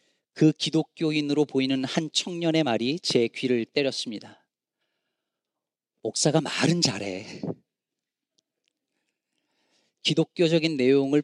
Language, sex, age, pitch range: Korean, male, 40-59, 120-155 Hz